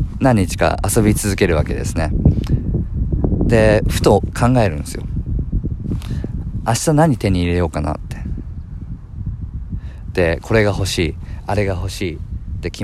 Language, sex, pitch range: Japanese, male, 85-115 Hz